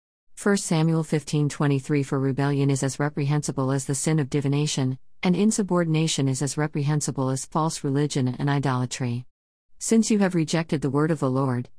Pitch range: 130-155 Hz